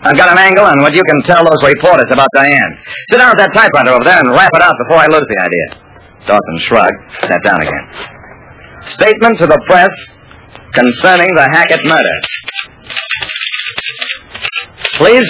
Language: English